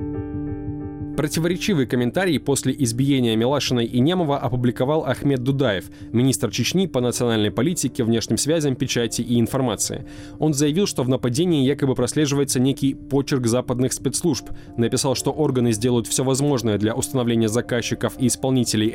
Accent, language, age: native, Russian, 20-39